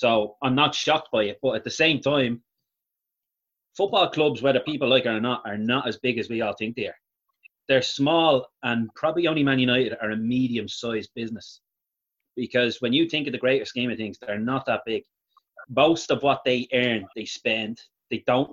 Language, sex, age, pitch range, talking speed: English, male, 30-49, 115-140 Hz, 205 wpm